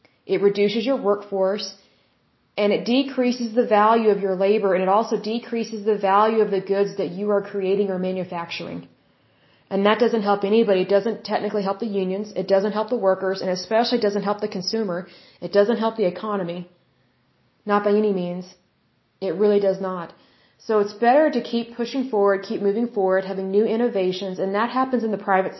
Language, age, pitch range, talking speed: Bengali, 30-49, 190-225 Hz, 190 wpm